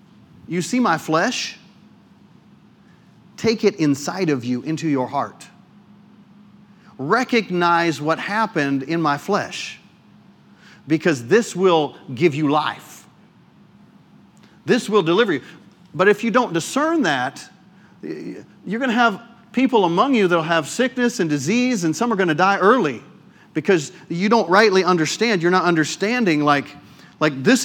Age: 40-59